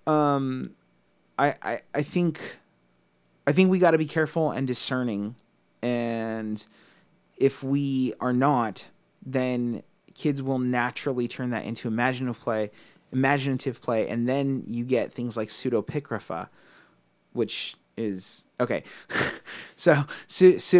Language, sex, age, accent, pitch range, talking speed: English, male, 30-49, American, 110-130 Hz, 115 wpm